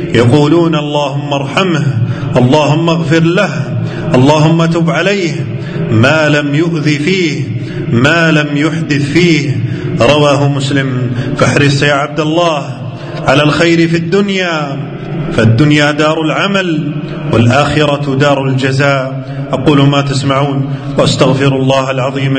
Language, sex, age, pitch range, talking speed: Arabic, male, 30-49, 135-155 Hz, 105 wpm